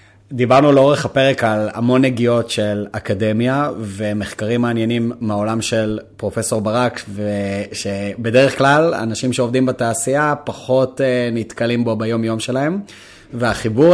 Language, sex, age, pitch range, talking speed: Hebrew, male, 30-49, 105-130 Hz, 110 wpm